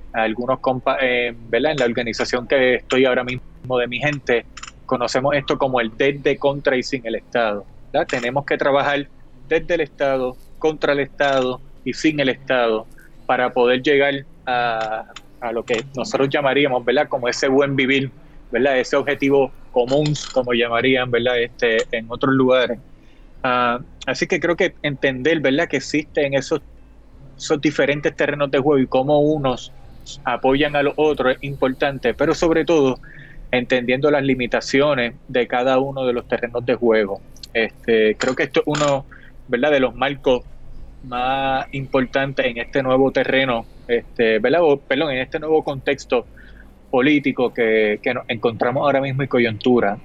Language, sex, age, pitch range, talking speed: Spanish, male, 20-39, 125-145 Hz, 160 wpm